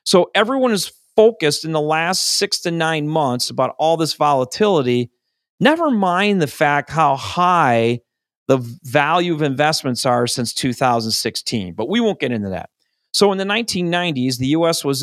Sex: male